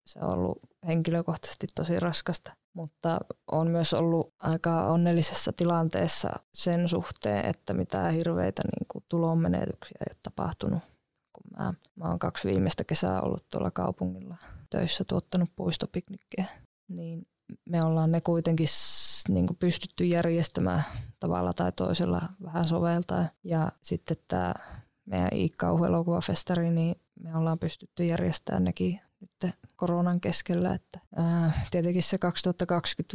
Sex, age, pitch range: female, 20-39, 160-170 Hz